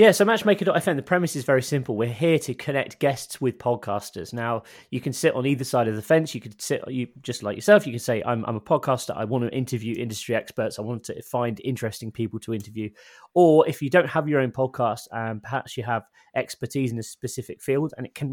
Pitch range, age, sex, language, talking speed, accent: 115-140 Hz, 20-39, male, English, 240 wpm, British